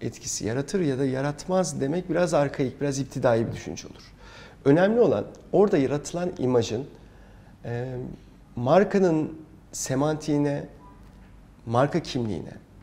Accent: native